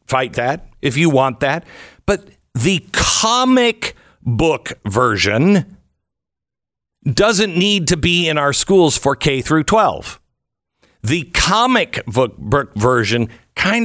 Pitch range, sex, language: 115-170 Hz, male, English